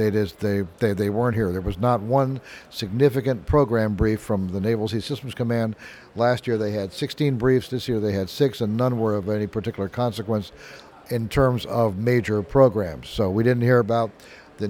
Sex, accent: male, American